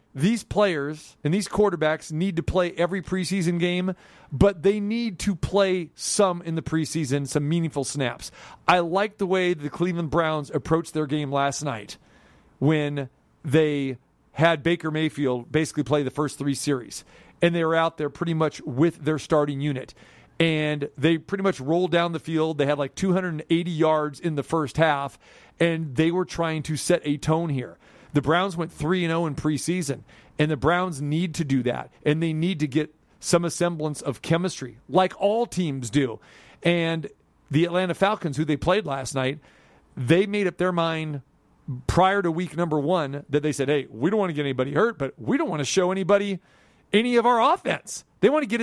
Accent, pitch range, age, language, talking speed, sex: American, 145-185 Hz, 40-59, English, 190 wpm, male